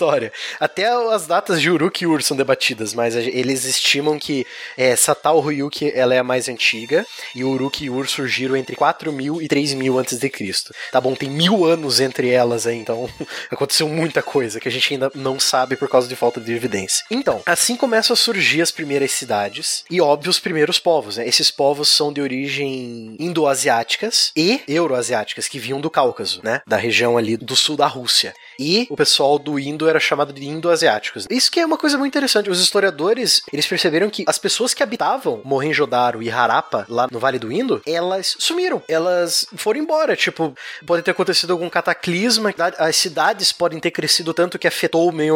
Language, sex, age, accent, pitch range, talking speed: Portuguese, male, 20-39, Brazilian, 130-175 Hz, 195 wpm